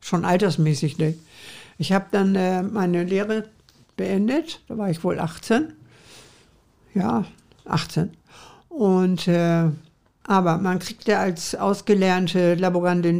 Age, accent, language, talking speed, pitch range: 60-79, German, German, 120 wpm, 165-195 Hz